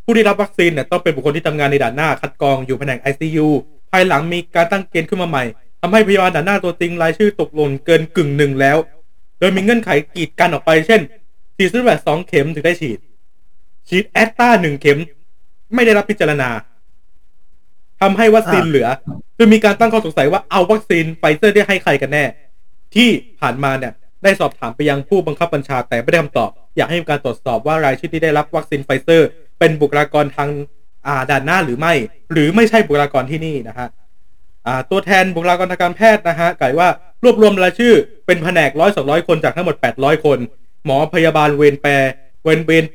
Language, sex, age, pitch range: Thai, male, 20-39, 145-190 Hz